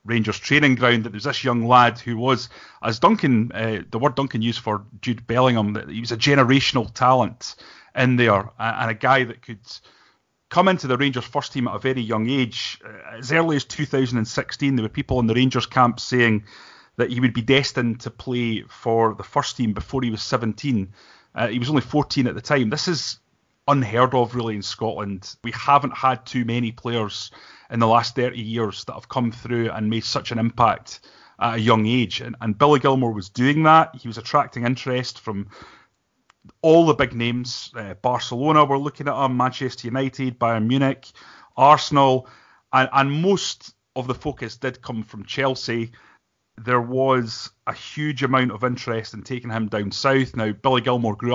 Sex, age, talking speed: male, 30-49, 190 wpm